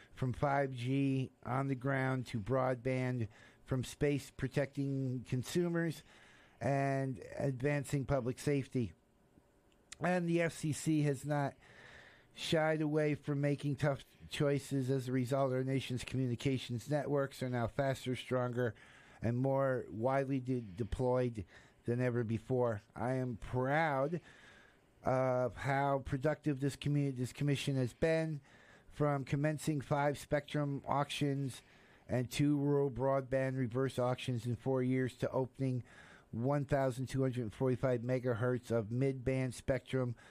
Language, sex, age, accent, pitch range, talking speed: English, male, 50-69, American, 125-140 Hz, 115 wpm